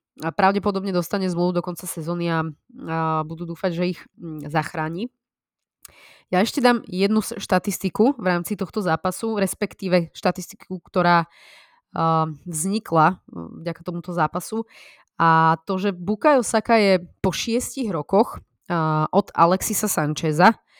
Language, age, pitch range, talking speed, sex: Slovak, 20-39, 165-195 Hz, 120 wpm, female